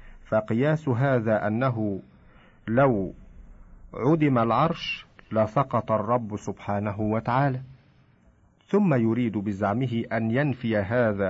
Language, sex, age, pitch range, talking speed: Arabic, male, 50-69, 105-135 Hz, 85 wpm